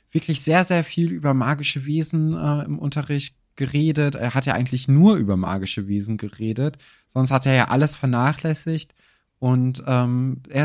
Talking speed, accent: 165 wpm, German